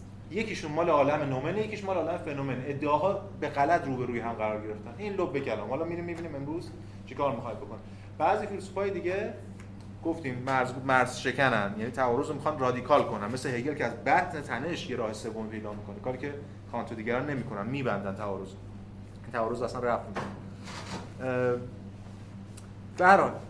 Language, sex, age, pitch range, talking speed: Persian, male, 30-49, 105-155 Hz, 160 wpm